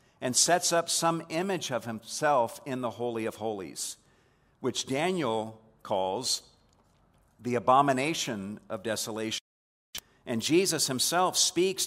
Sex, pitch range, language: male, 120-160 Hz, English